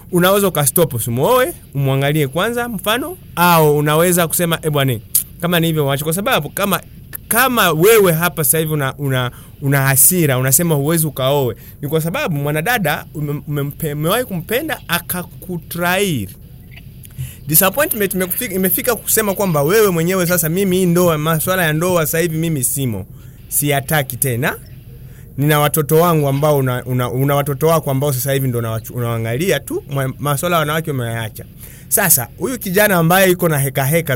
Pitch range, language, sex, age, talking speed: 135-175 Hz, Swahili, male, 30-49, 145 wpm